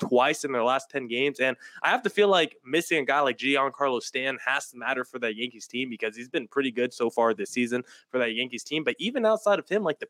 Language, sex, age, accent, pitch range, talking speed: English, male, 20-39, American, 130-175 Hz, 265 wpm